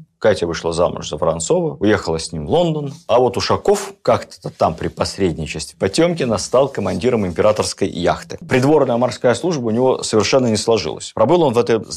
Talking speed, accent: 175 wpm, native